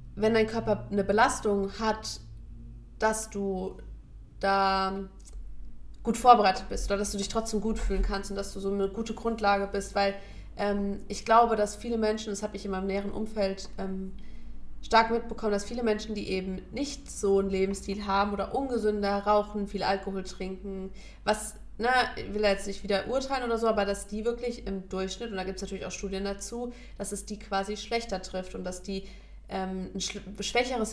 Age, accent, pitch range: 20-39, German, 195-220 Hz